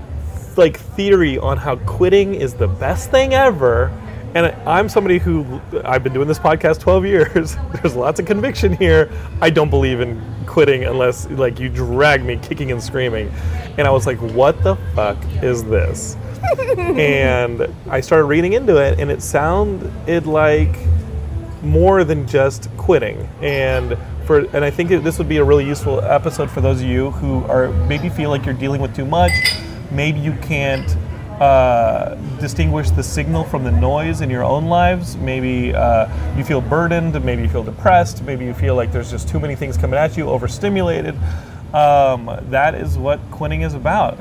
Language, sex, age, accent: English, male, 30-49, American